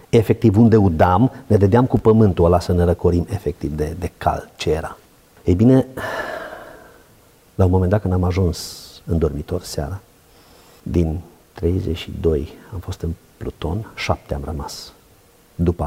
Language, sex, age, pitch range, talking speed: Romanian, male, 50-69, 85-100 Hz, 150 wpm